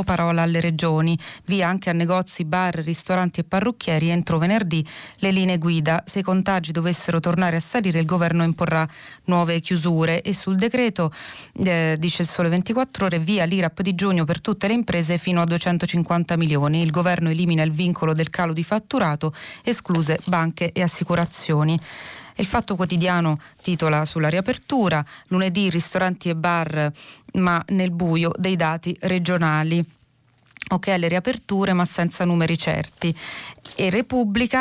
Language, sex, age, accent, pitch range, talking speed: Italian, female, 30-49, native, 165-185 Hz, 150 wpm